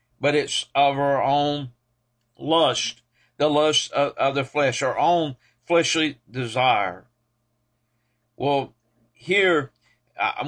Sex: male